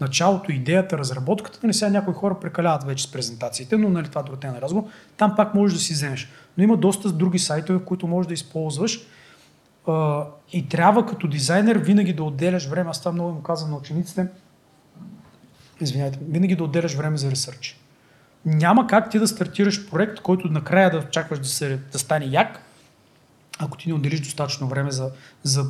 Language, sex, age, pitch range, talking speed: Bulgarian, male, 30-49, 145-185 Hz, 175 wpm